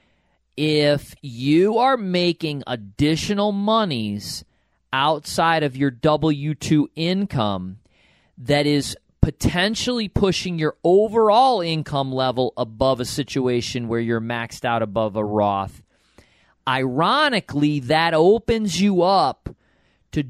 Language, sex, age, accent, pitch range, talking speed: English, male, 40-59, American, 125-175 Hz, 105 wpm